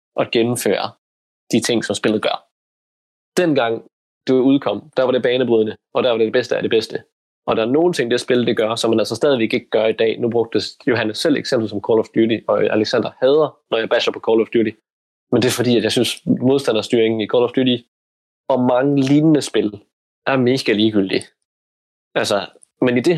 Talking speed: 210 wpm